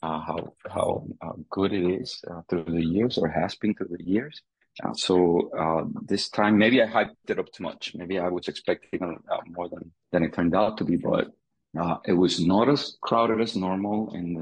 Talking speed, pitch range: 215 wpm, 85-95 Hz